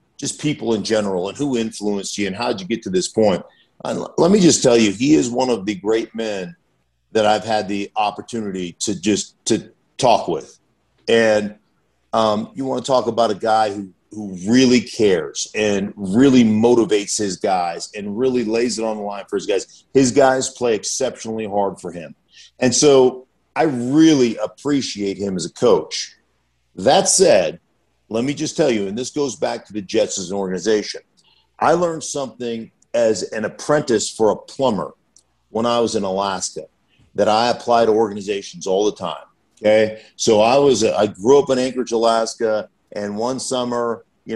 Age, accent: 50-69, American